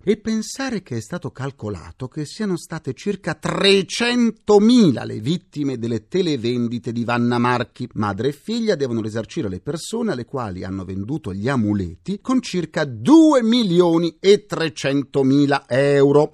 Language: Italian